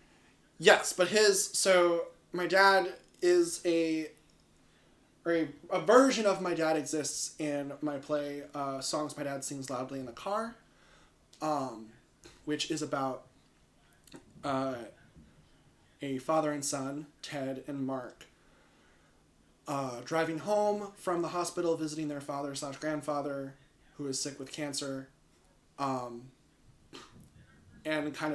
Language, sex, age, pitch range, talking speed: English, male, 20-39, 125-160 Hz, 125 wpm